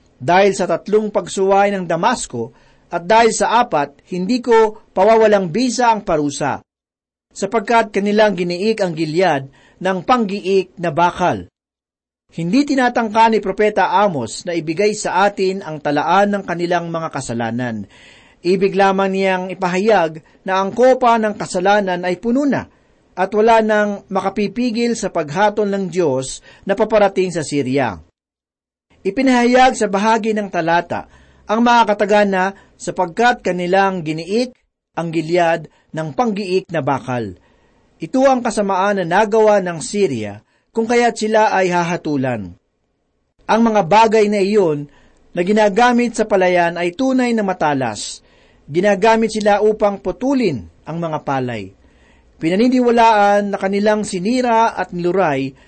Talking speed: 130 wpm